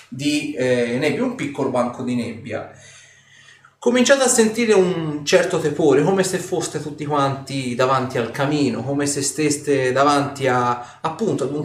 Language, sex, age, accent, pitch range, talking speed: Italian, male, 30-49, native, 130-170 Hz, 155 wpm